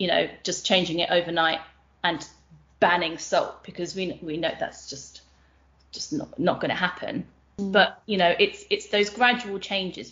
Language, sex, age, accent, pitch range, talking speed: English, female, 20-39, British, 175-210 Hz, 170 wpm